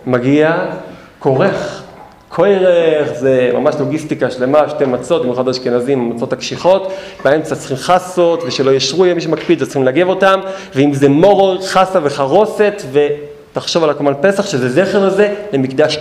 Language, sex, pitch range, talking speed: Hebrew, male, 130-185 Hz, 140 wpm